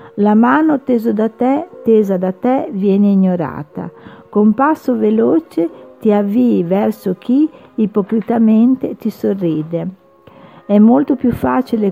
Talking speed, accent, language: 120 wpm, native, Italian